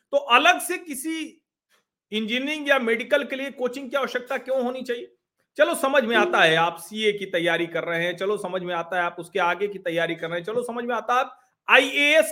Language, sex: Hindi, male